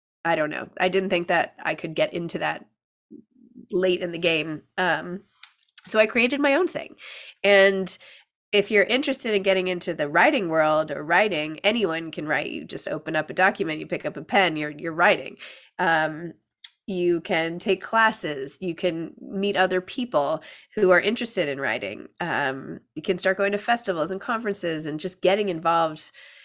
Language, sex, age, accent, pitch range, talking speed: English, female, 20-39, American, 175-225 Hz, 180 wpm